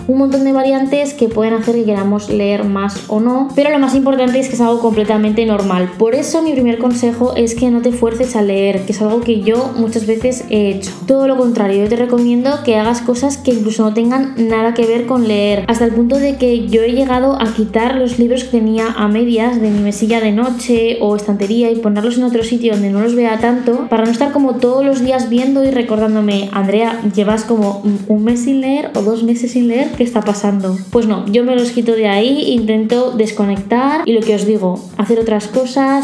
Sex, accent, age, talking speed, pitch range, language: female, Spanish, 20-39, 230 wpm, 210-245 Hz, Spanish